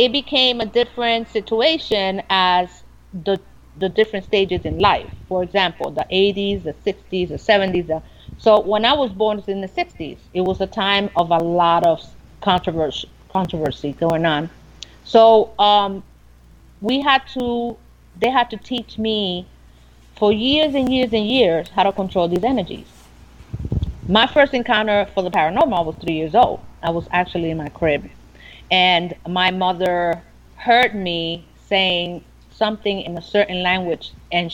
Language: English